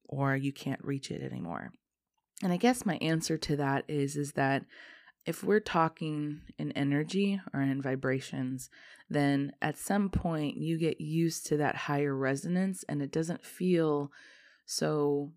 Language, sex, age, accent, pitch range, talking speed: English, female, 20-39, American, 140-165 Hz, 155 wpm